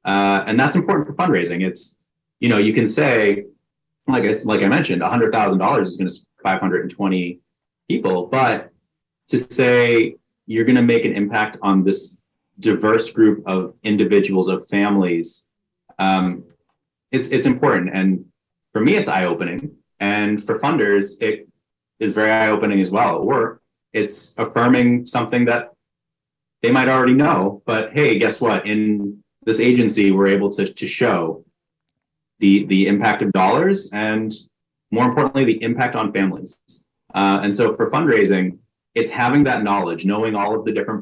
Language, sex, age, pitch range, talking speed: English, male, 30-49, 100-115 Hz, 165 wpm